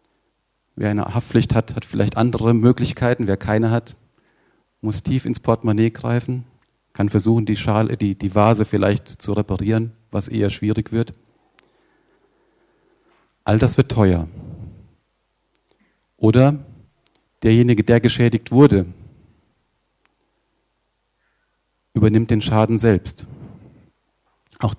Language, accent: German, German